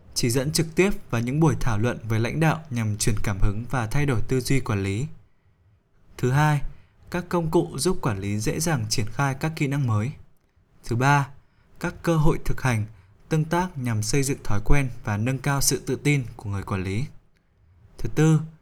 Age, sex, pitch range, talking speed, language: 20-39, male, 110-145 Hz, 210 wpm, Vietnamese